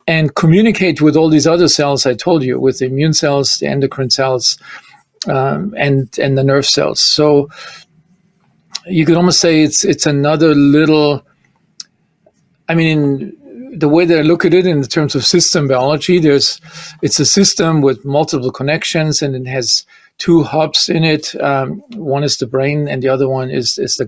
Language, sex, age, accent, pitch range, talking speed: English, male, 50-69, German, 140-165 Hz, 185 wpm